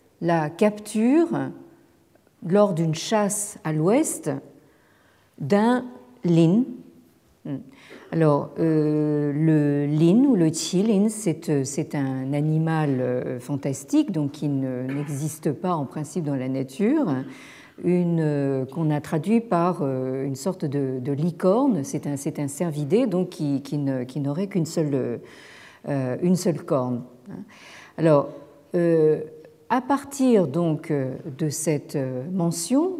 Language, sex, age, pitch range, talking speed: French, female, 50-69, 145-205 Hz, 125 wpm